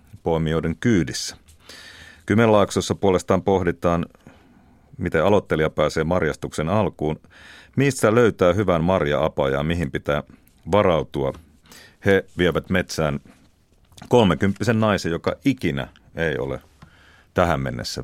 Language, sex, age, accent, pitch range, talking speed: Finnish, male, 40-59, native, 75-95 Hz, 95 wpm